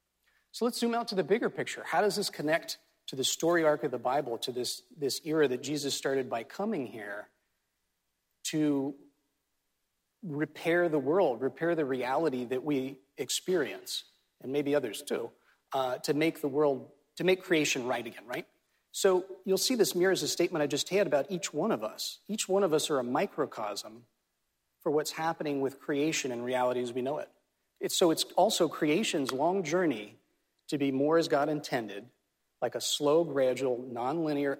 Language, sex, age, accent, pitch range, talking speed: English, male, 40-59, American, 130-170 Hz, 180 wpm